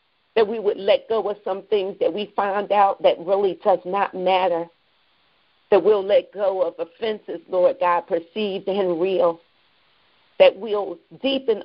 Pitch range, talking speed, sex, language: 185-245 Hz, 160 wpm, female, English